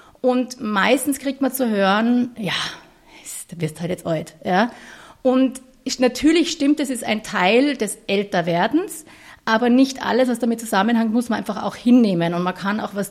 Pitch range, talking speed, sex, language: 200-255 Hz, 170 wpm, female, German